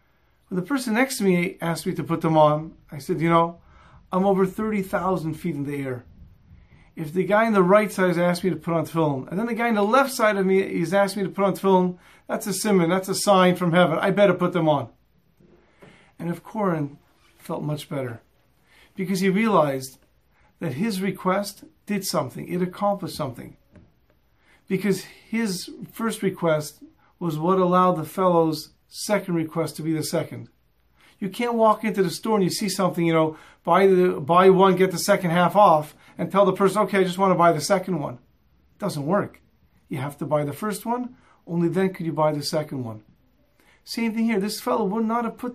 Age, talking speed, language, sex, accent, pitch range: 40-59, 210 wpm, English, male, American, 160-200 Hz